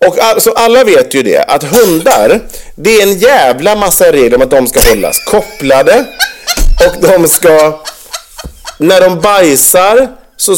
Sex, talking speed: male, 160 wpm